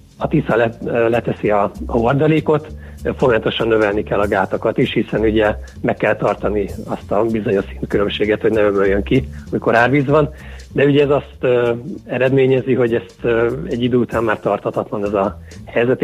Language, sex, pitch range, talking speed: Hungarian, male, 105-130 Hz, 160 wpm